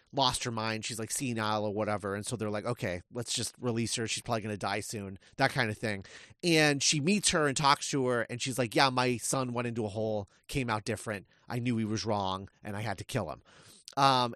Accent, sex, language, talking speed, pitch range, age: American, male, English, 250 wpm, 115-165 Hz, 30-49